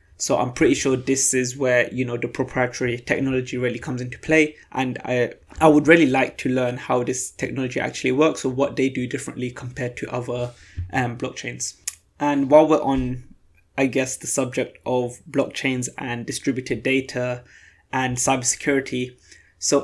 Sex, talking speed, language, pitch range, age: male, 165 wpm, English, 125-140 Hz, 20-39